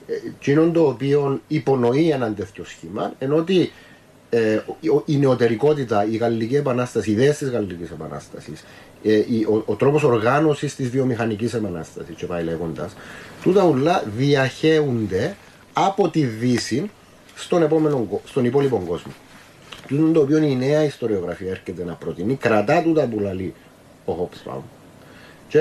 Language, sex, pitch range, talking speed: Greek, male, 110-145 Hz, 135 wpm